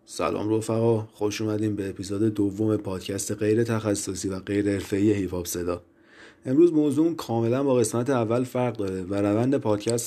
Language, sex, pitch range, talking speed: Persian, male, 100-130 Hz, 155 wpm